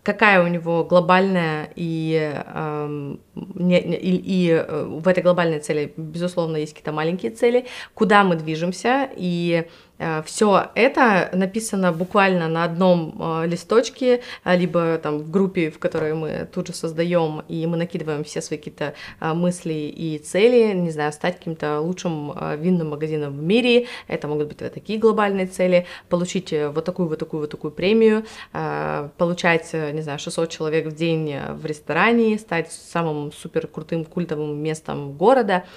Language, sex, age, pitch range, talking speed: Russian, female, 20-39, 160-195 Hz, 135 wpm